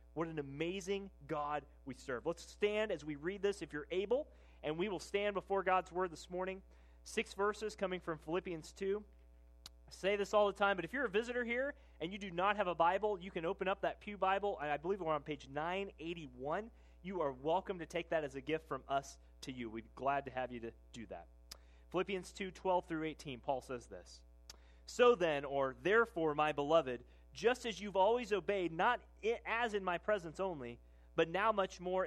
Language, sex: English, male